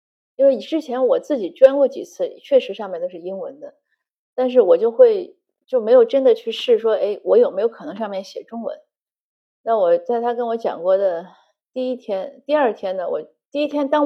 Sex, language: female, Chinese